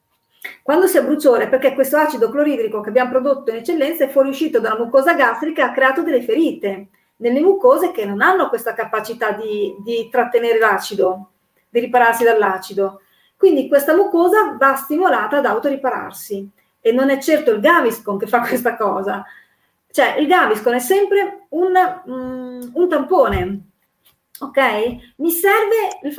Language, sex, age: Italian, female, 40-59